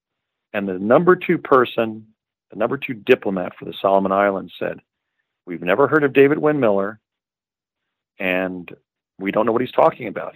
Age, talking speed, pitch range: 40-59, 170 wpm, 95-120 Hz